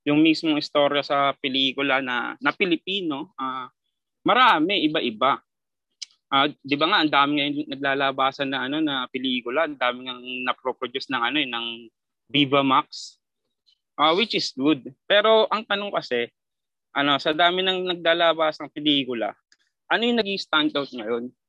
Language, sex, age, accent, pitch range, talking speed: Filipino, male, 20-39, native, 130-165 Hz, 145 wpm